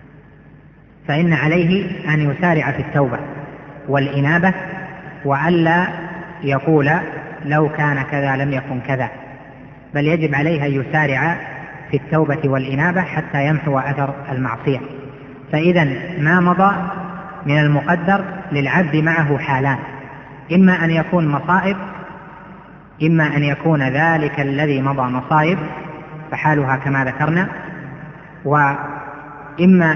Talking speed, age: 100 wpm, 30-49